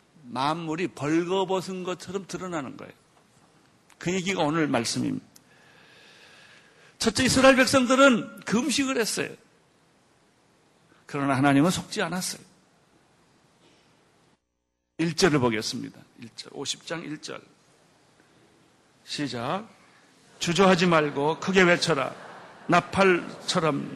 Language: Korean